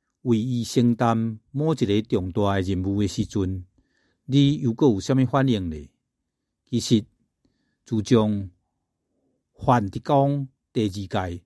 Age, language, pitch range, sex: 60-79, Chinese, 100-130 Hz, male